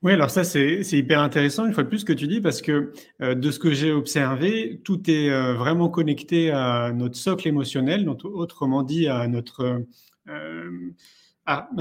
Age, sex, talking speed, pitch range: 30-49, male, 195 wpm, 140-185 Hz